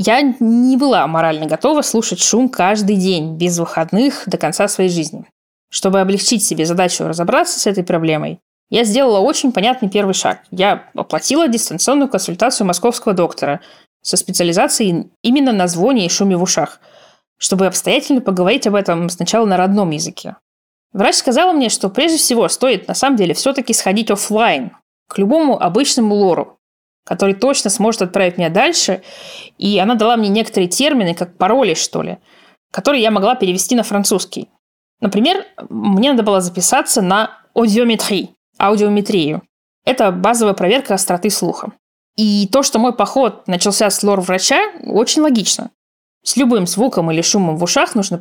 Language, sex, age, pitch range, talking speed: Russian, female, 20-39, 185-240 Hz, 150 wpm